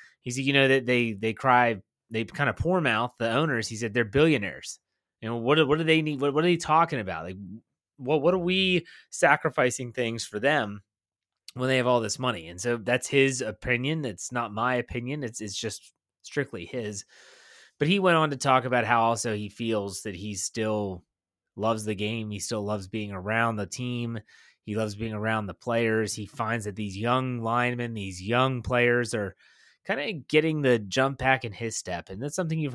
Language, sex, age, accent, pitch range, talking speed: English, male, 20-39, American, 110-135 Hz, 210 wpm